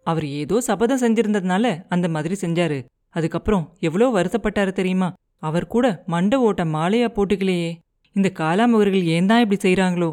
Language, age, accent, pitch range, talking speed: Tamil, 30-49, native, 165-215 Hz, 135 wpm